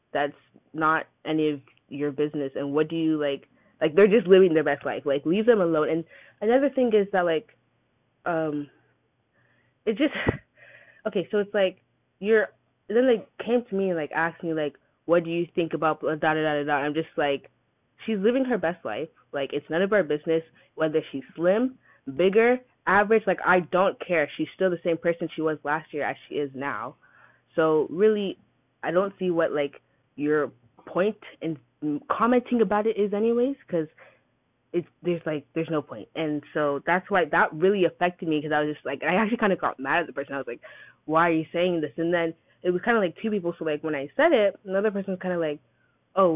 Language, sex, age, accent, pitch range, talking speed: English, female, 10-29, American, 150-205 Hz, 215 wpm